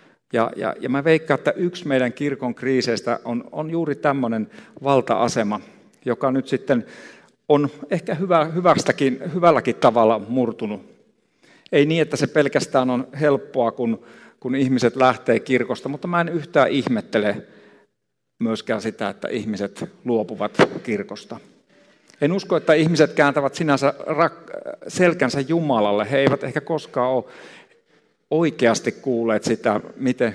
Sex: male